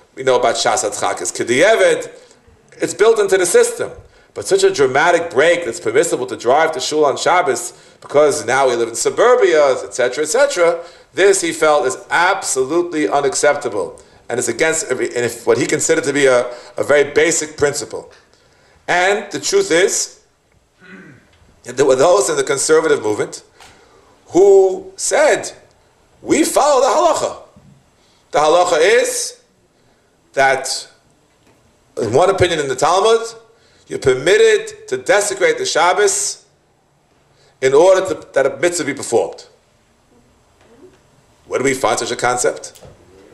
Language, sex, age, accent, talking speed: English, male, 50-69, American, 140 wpm